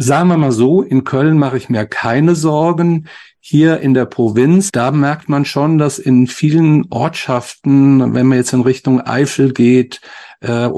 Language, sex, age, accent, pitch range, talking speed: German, male, 50-69, German, 120-135 Hz, 175 wpm